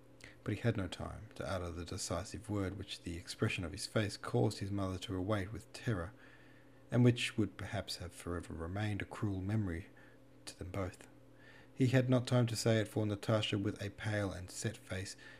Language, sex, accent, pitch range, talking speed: English, male, Australian, 95-120 Hz, 200 wpm